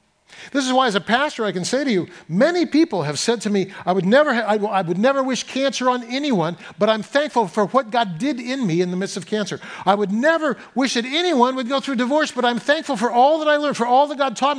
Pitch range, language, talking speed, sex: 200-285 Hz, English, 265 wpm, male